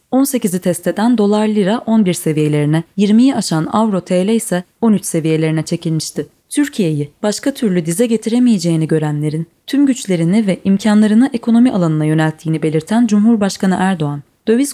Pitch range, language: 165-230 Hz, Turkish